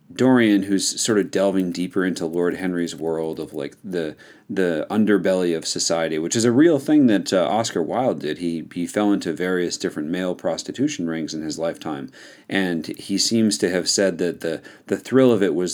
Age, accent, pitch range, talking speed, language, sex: 40-59, American, 85-115 Hz, 200 wpm, English, male